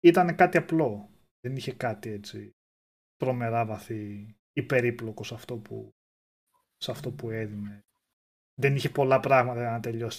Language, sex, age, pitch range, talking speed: Greek, male, 20-39, 120-155 Hz, 125 wpm